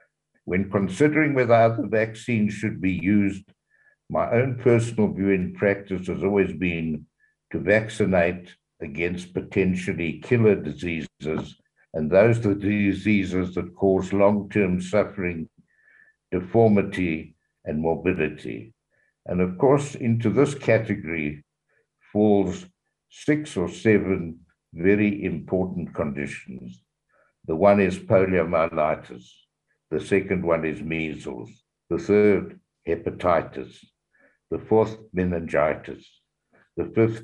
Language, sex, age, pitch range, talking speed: English, male, 60-79, 85-110 Hz, 105 wpm